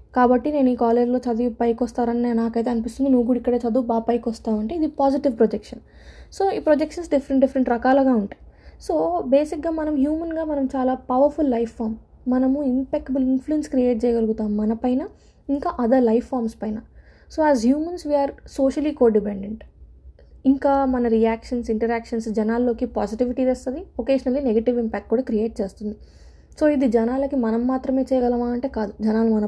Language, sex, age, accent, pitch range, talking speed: Telugu, female, 20-39, native, 225-275 Hz, 155 wpm